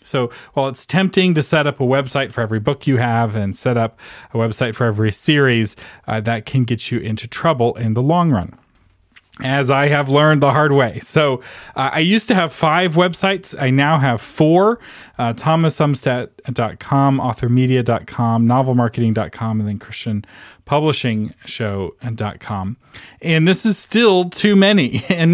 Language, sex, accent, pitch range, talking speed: English, male, American, 115-150 Hz, 155 wpm